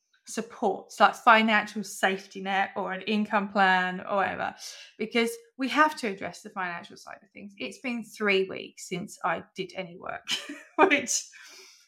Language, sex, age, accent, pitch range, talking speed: English, female, 20-39, British, 185-220 Hz, 155 wpm